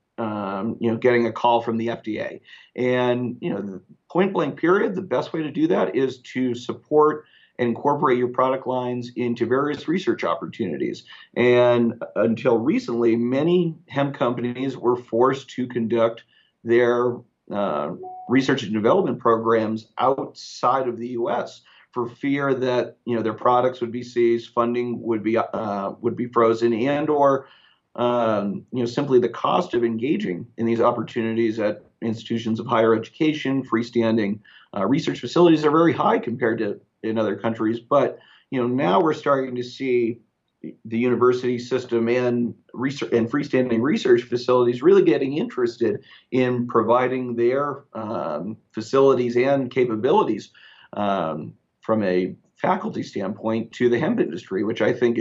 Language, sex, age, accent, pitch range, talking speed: English, male, 40-59, American, 115-130 Hz, 150 wpm